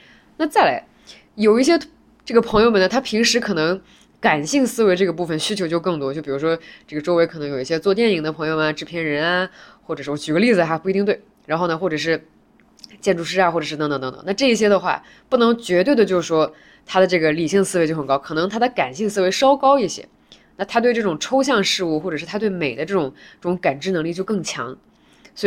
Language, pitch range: Chinese, 155-220 Hz